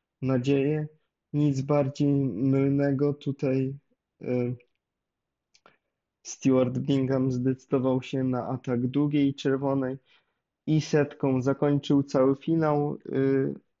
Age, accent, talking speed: 20-39, native, 80 wpm